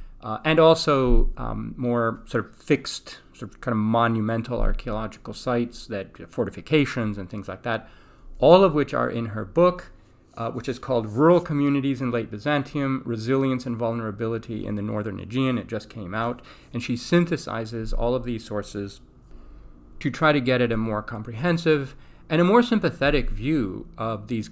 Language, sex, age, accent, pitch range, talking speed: English, male, 40-59, American, 105-140 Hz, 170 wpm